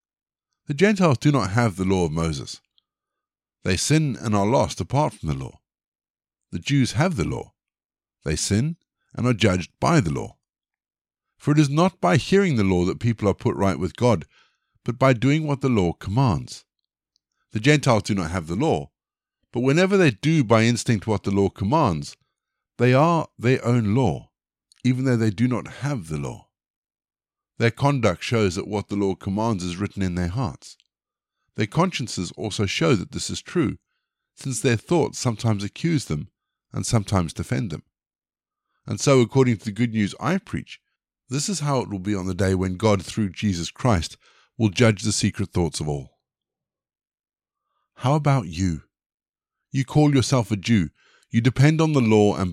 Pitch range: 100-135 Hz